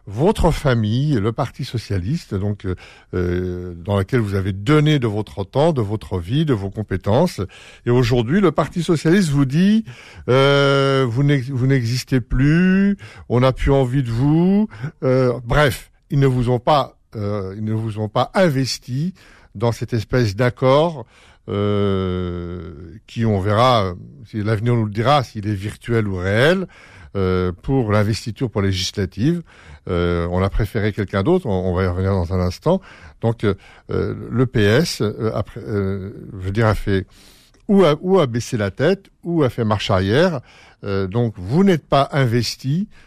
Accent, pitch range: French, 100-140 Hz